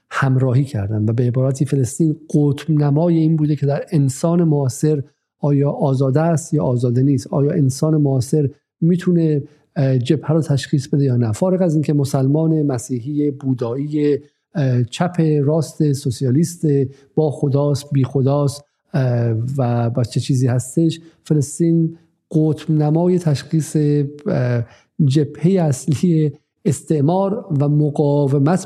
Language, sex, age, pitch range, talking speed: Persian, male, 50-69, 130-155 Hz, 120 wpm